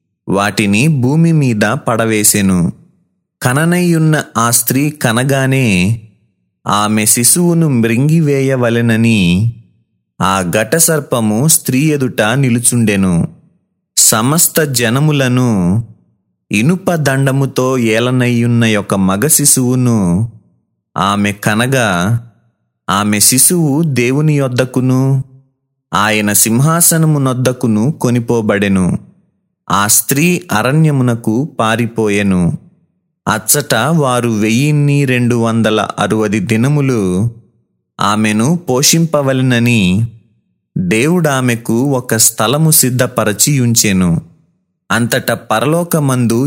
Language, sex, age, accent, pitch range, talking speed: Telugu, male, 30-49, native, 110-145 Hz, 65 wpm